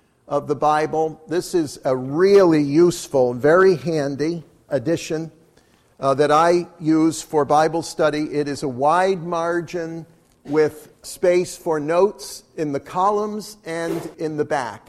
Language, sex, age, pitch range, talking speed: English, male, 50-69, 135-165 Hz, 135 wpm